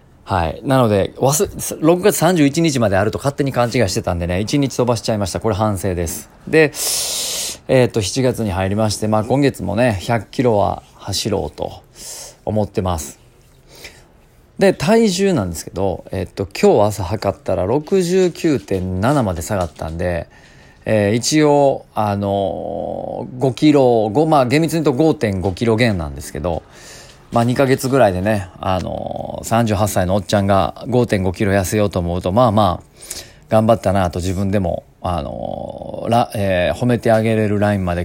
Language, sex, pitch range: Japanese, male, 95-130 Hz